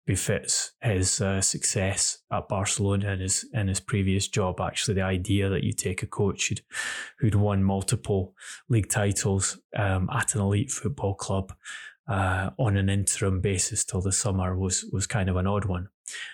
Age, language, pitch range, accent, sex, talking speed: 20-39, English, 95-110 Hz, British, male, 175 wpm